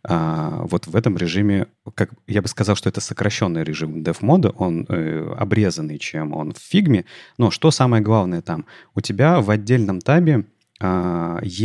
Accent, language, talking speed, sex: native, Russian, 170 wpm, male